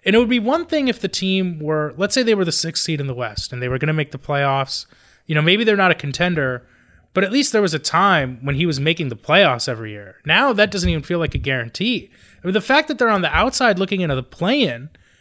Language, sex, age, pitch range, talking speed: English, male, 30-49, 145-195 Hz, 280 wpm